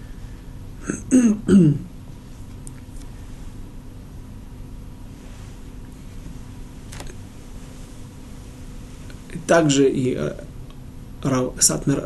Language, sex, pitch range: Russian, male, 120-155 Hz